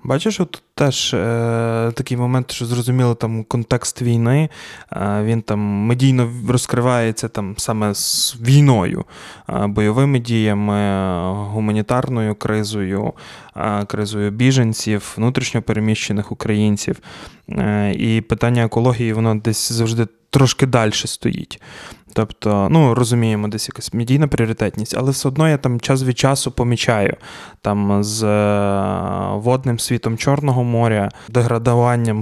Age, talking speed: 20-39, 105 wpm